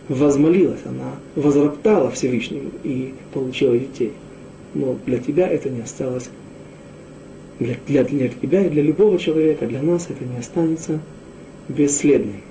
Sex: male